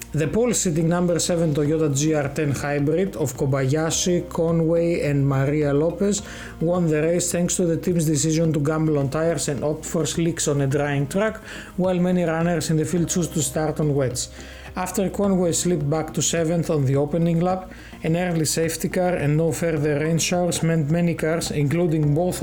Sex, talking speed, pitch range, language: male, 185 wpm, 150-170 Hz, Greek